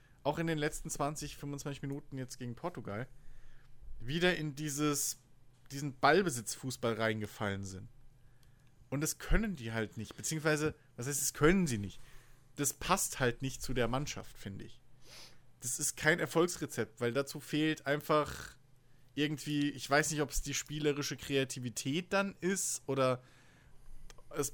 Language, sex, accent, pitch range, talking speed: German, male, German, 130-160 Hz, 145 wpm